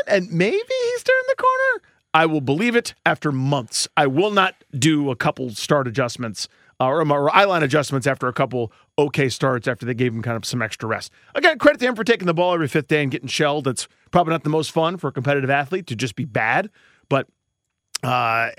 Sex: male